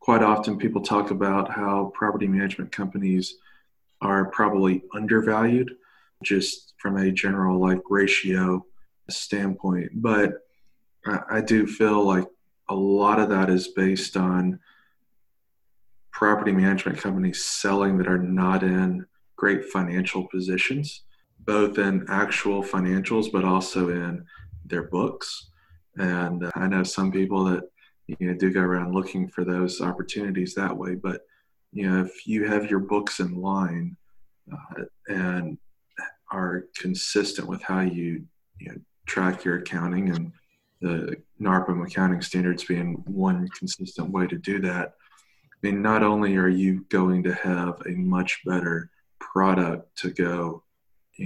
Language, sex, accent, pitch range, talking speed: English, male, American, 90-100 Hz, 140 wpm